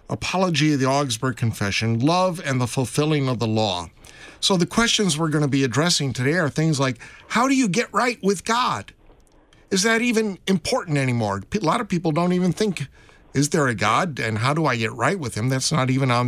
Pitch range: 120-165 Hz